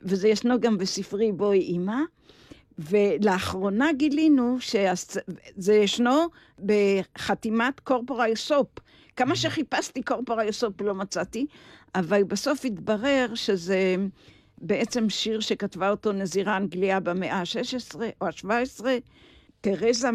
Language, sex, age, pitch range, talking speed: Hebrew, female, 50-69, 190-245 Hz, 100 wpm